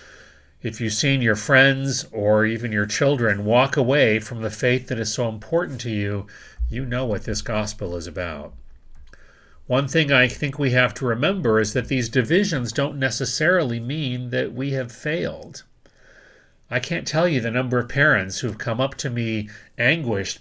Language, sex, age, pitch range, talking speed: English, male, 40-59, 110-135 Hz, 175 wpm